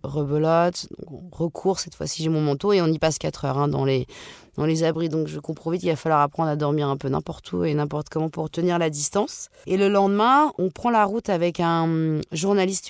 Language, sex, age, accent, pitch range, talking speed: French, female, 20-39, French, 150-185 Hz, 235 wpm